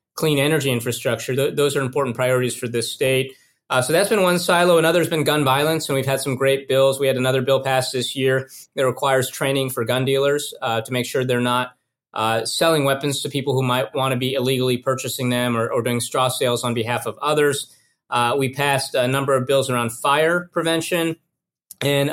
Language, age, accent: English, 30-49, American